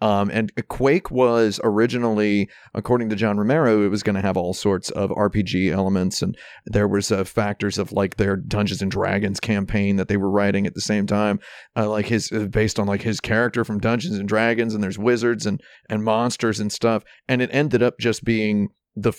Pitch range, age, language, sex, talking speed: 105-120 Hz, 40-59, English, male, 210 wpm